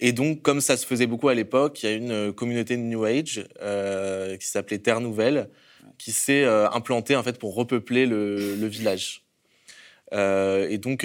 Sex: male